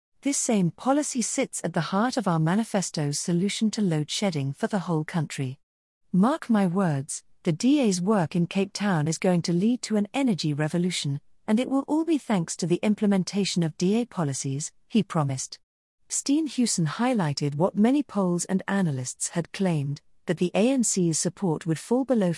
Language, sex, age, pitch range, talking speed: English, female, 40-59, 165-215 Hz, 170 wpm